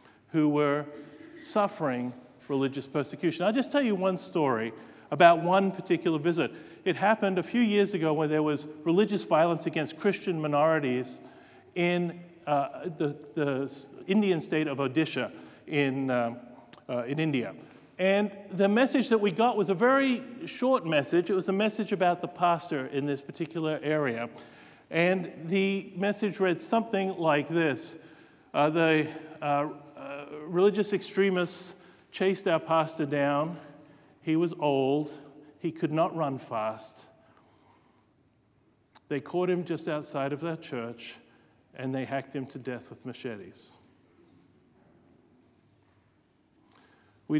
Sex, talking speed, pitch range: male, 135 wpm, 140-180 Hz